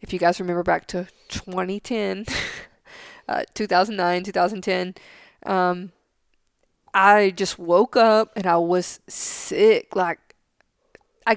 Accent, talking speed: American, 110 wpm